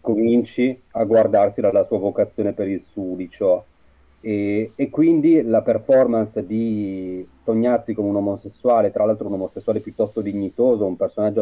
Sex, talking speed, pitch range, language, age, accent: male, 140 wpm, 95-120 Hz, Italian, 30-49, native